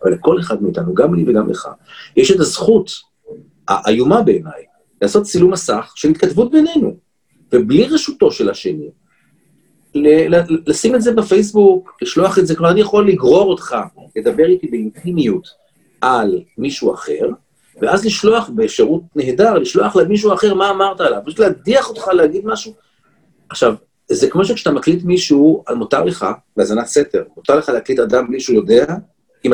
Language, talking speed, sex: Hebrew, 145 wpm, male